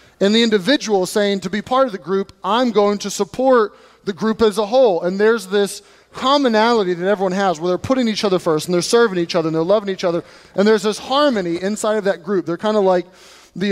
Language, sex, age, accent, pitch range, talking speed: English, male, 30-49, American, 180-220 Hz, 245 wpm